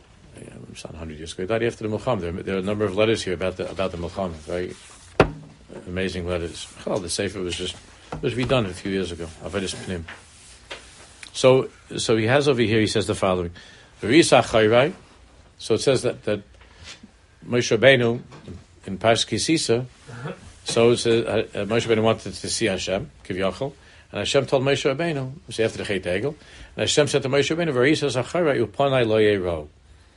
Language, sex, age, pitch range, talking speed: English, male, 60-79, 90-120 Hz, 175 wpm